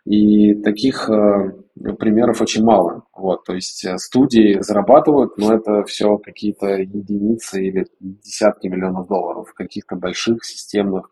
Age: 20-39